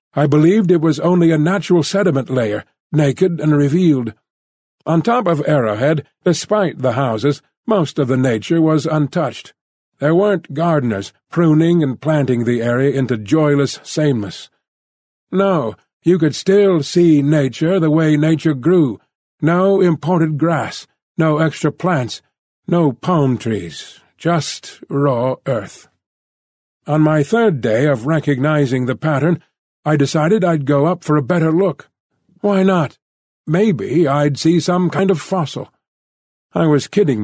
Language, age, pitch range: English, 50-69, 130-170 Hz